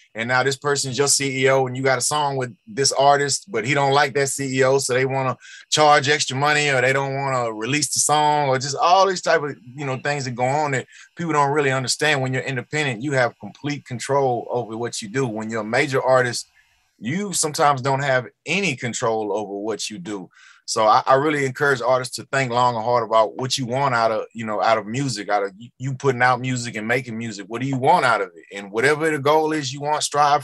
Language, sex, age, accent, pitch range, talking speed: English, male, 30-49, American, 125-145 Hz, 250 wpm